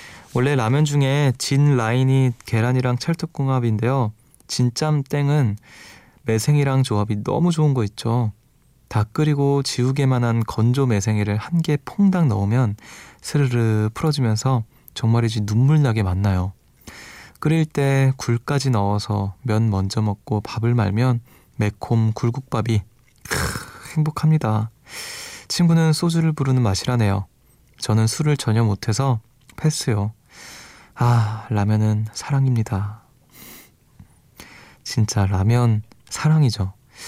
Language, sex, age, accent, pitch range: Korean, male, 20-39, native, 110-135 Hz